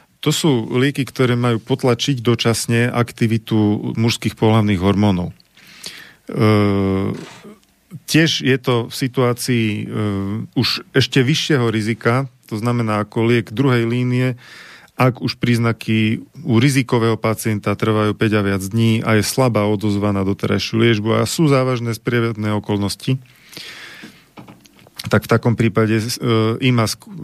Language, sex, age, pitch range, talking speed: Slovak, male, 40-59, 110-130 Hz, 125 wpm